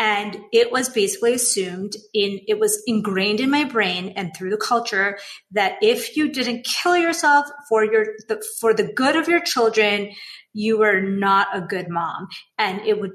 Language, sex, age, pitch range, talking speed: English, female, 30-49, 195-235 Hz, 185 wpm